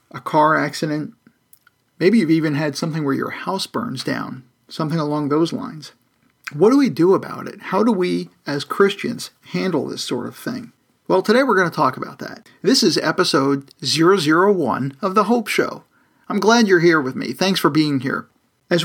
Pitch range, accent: 145-190 Hz, American